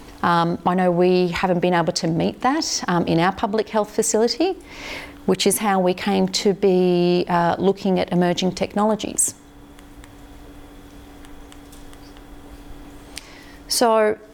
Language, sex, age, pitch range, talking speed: English, female, 30-49, 175-210 Hz, 120 wpm